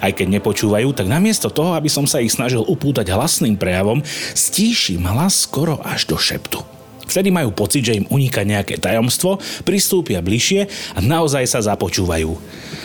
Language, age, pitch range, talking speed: Slovak, 30-49, 100-165 Hz, 160 wpm